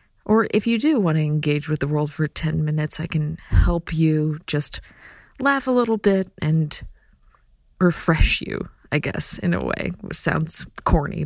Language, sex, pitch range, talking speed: English, female, 160-220 Hz, 175 wpm